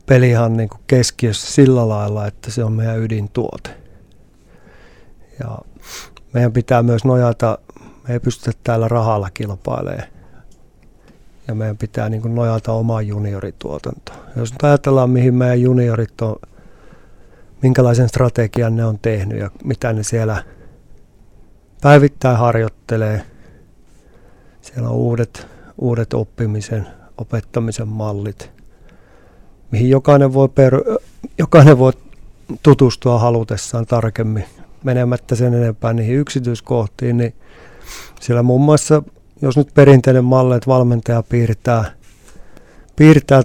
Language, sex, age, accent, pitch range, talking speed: Finnish, male, 50-69, native, 110-125 Hz, 110 wpm